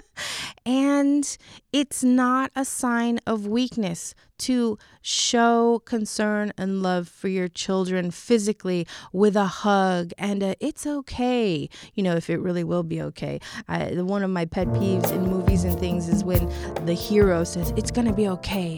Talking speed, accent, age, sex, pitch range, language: 165 wpm, American, 30-49, female, 185-250 Hz, English